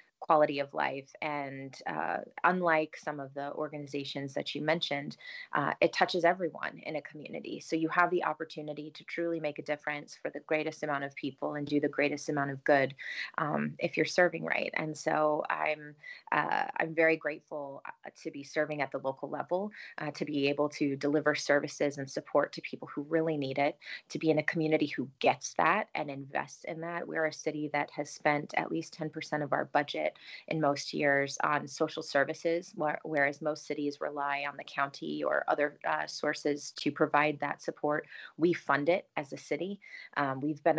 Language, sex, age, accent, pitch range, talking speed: English, female, 30-49, American, 145-160 Hz, 195 wpm